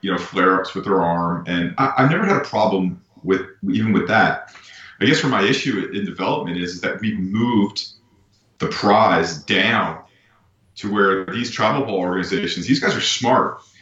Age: 30-49